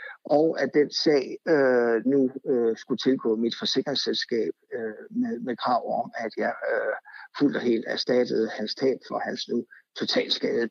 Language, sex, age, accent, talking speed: Danish, male, 60-79, native, 165 wpm